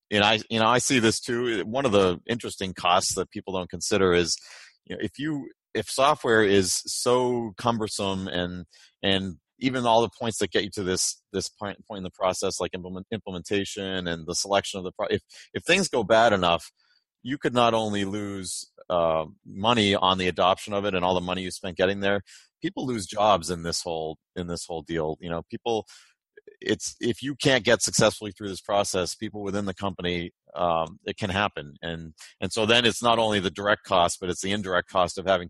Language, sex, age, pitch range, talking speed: English, male, 30-49, 90-105 Hz, 215 wpm